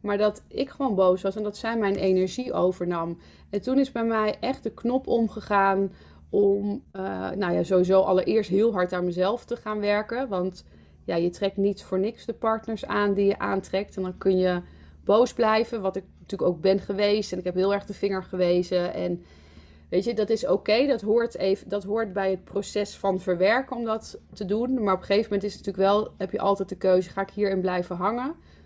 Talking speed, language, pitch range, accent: 225 wpm, Dutch, 180-205 Hz, Dutch